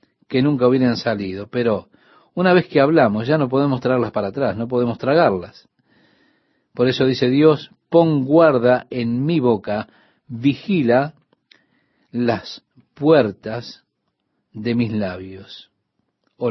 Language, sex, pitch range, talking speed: Spanish, male, 115-150 Hz, 125 wpm